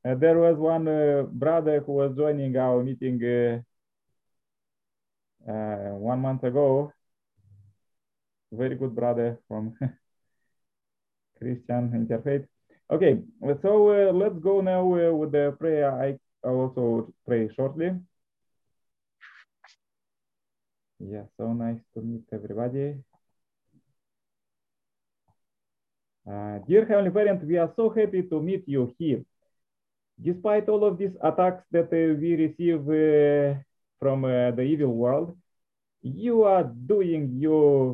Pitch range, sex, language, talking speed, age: 125-170 Hz, male, English, 115 wpm, 20-39